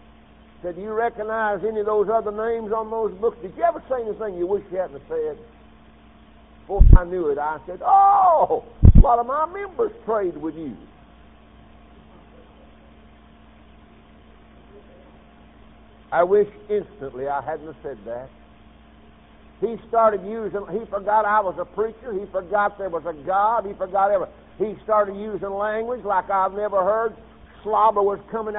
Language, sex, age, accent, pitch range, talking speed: English, male, 60-79, American, 185-220 Hz, 155 wpm